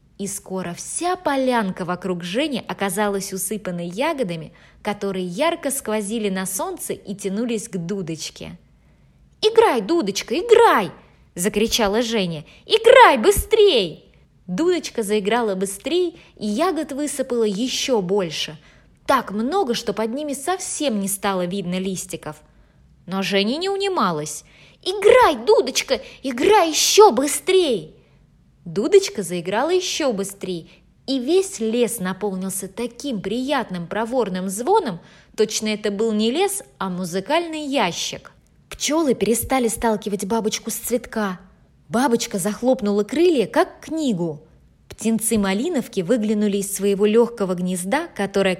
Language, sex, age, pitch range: Russian, female, 20-39, 195-280 Hz